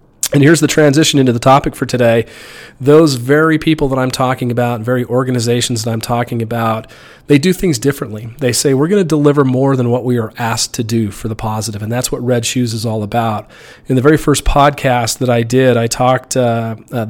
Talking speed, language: 220 wpm, English